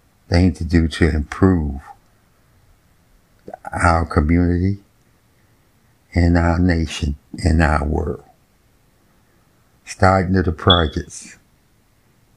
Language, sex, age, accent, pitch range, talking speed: English, male, 60-79, American, 80-105 Hz, 80 wpm